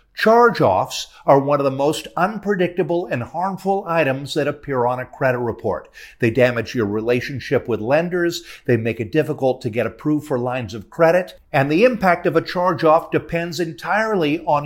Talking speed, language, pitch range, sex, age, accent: 170 wpm, English, 130-180 Hz, male, 50-69, American